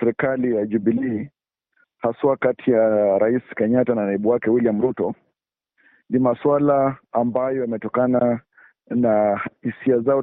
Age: 50-69